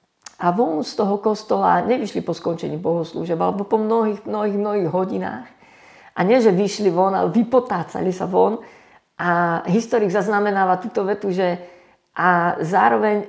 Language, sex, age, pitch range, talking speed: Slovak, female, 50-69, 165-200 Hz, 145 wpm